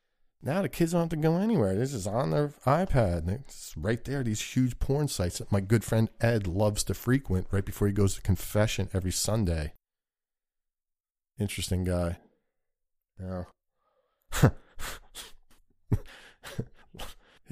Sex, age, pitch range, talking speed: male, 40-59, 95-130 Hz, 135 wpm